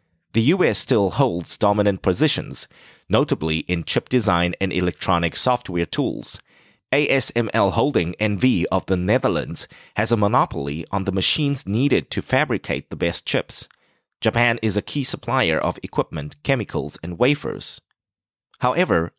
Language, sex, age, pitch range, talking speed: English, male, 30-49, 95-125 Hz, 135 wpm